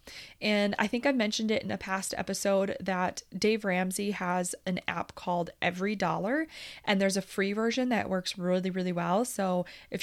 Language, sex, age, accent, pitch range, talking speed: English, female, 20-39, American, 185-230 Hz, 185 wpm